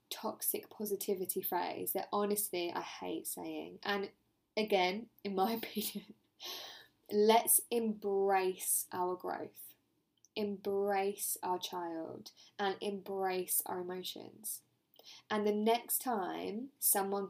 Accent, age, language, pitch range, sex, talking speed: British, 10-29, English, 190-225 Hz, female, 100 wpm